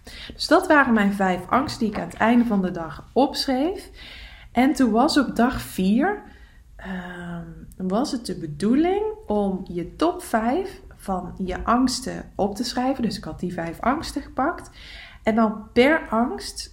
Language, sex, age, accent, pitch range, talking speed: English, female, 20-39, Dutch, 185-250 Hz, 170 wpm